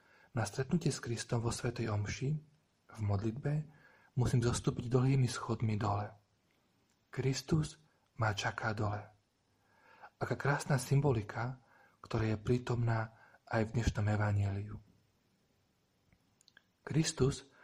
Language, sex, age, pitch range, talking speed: Slovak, male, 40-59, 110-130 Hz, 100 wpm